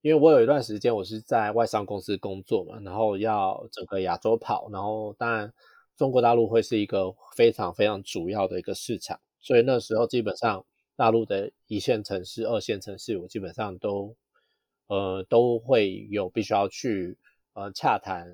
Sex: male